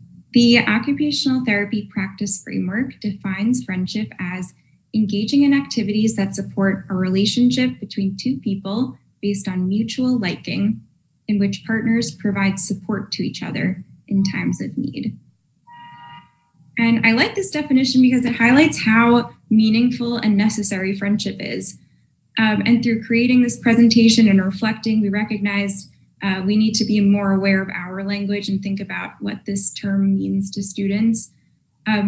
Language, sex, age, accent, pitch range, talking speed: English, female, 10-29, American, 195-230 Hz, 145 wpm